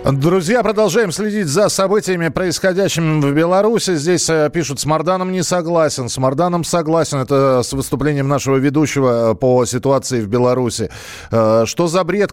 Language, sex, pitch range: Russian, male, 130-160 Hz